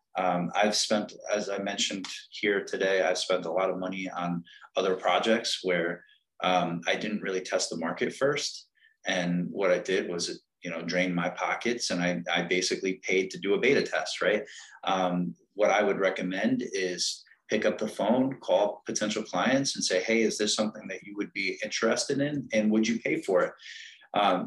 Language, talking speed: English, 195 wpm